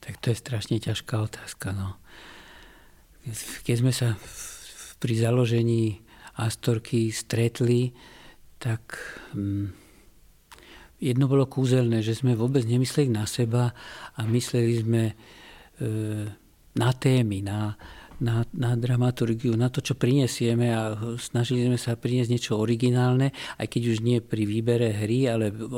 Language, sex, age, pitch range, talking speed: Slovak, male, 50-69, 115-130 Hz, 125 wpm